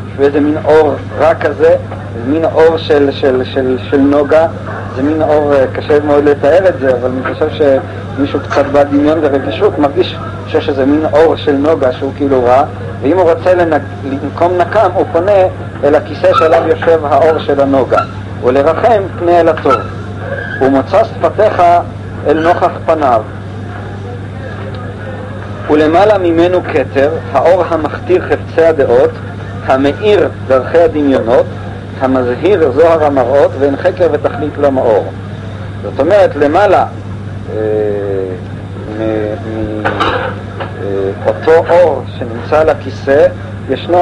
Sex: male